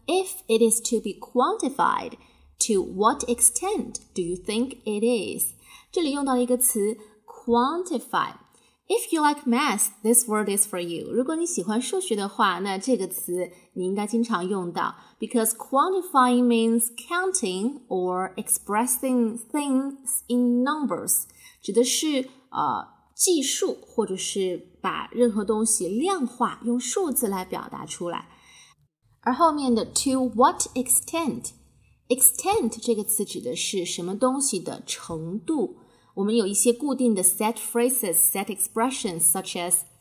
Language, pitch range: Chinese, 200-265 Hz